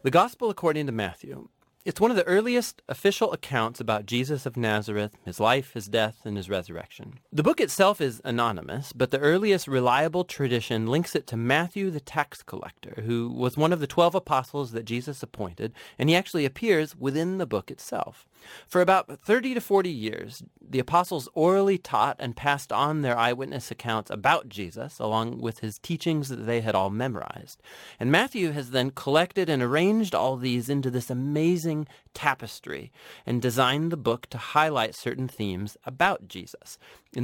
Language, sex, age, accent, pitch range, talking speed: English, male, 30-49, American, 120-165 Hz, 175 wpm